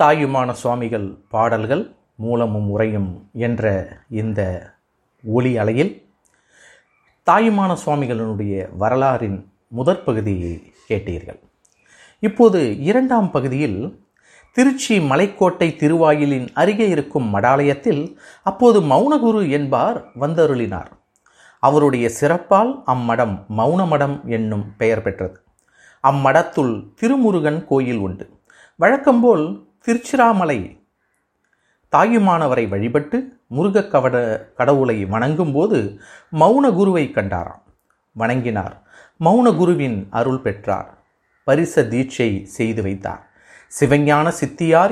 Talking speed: 80 wpm